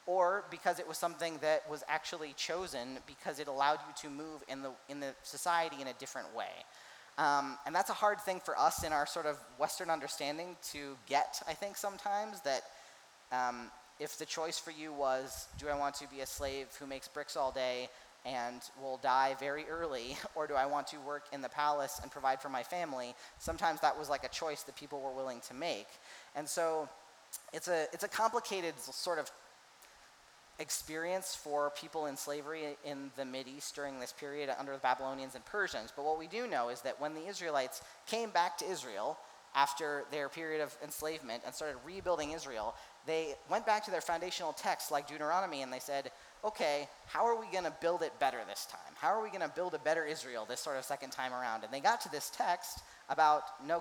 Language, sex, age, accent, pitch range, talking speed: English, male, 30-49, American, 135-165 Hz, 210 wpm